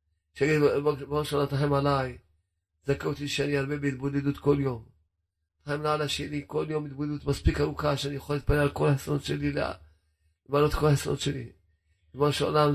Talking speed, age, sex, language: 155 wpm, 40-59, male, Hebrew